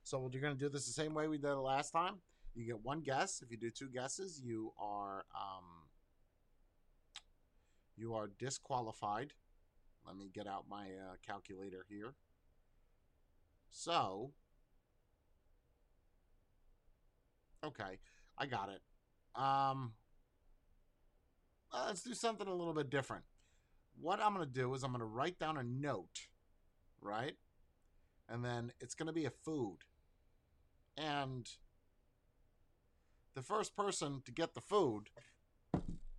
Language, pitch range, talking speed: English, 95-145 Hz, 135 wpm